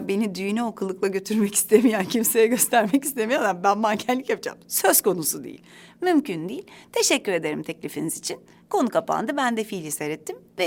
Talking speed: 150 wpm